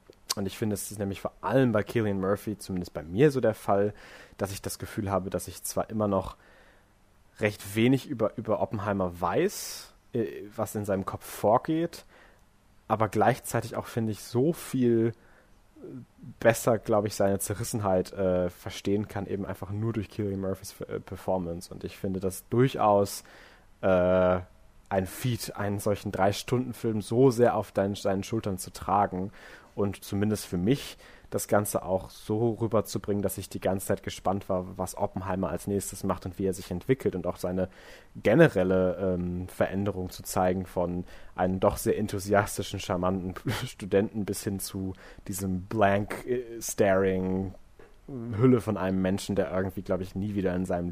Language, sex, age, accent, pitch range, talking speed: German, male, 30-49, German, 95-110 Hz, 165 wpm